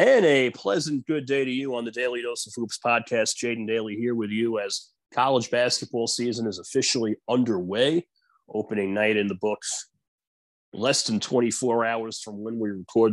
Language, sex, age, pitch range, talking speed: English, male, 30-49, 105-125 Hz, 180 wpm